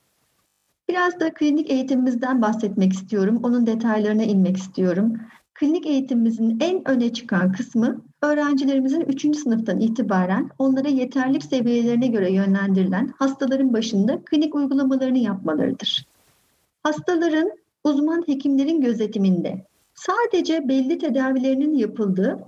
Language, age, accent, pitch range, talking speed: Turkish, 50-69, native, 215-280 Hz, 100 wpm